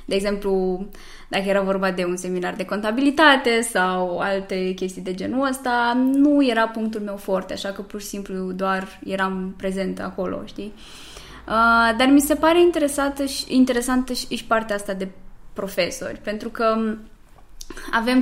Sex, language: female, Romanian